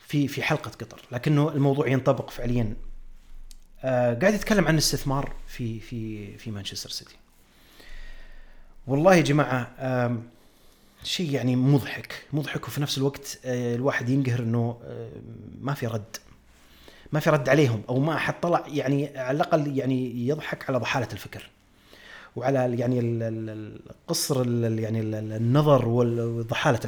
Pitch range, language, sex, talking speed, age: 120-155 Hz, Arabic, male, 125 wpm, 30-49